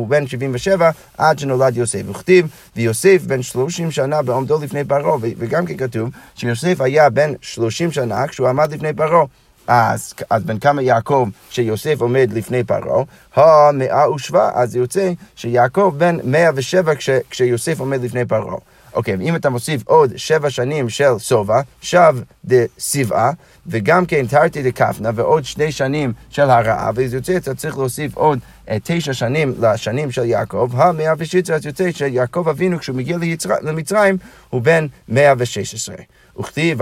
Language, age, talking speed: Hebrew, 30-49, 160 wpm